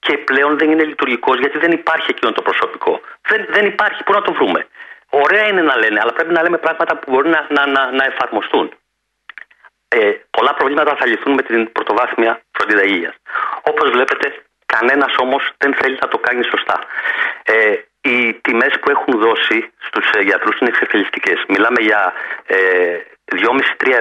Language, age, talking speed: Greek, 40-59, 160 wpm